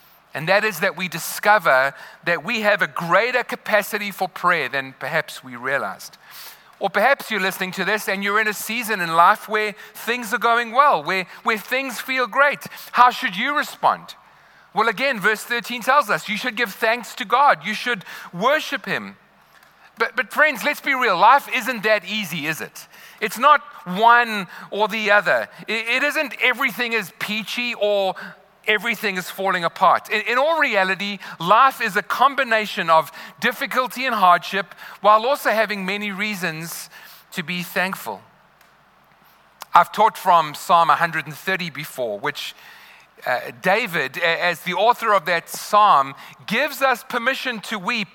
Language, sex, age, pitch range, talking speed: English, male, 40-59, 185-245 Hz, 160 wpm